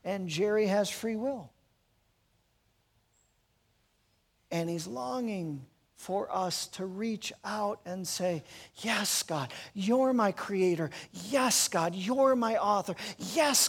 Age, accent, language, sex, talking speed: 40-59, American, English, male, 115 wpm